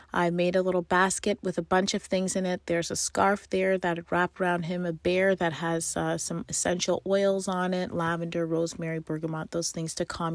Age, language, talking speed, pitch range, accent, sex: 30-49, English, 210 wpm, 165-190 Hz, American, female